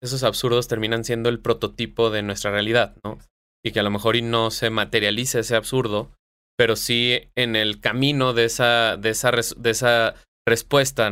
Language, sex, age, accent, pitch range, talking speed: Spanish, male, 20-39, Mexican, 110-125 Hz, 180 wpm